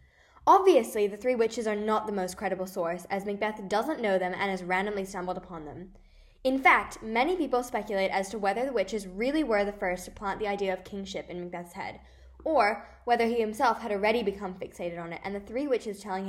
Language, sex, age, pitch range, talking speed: English, female, 10-29, 185-230 Hz, 215 wpm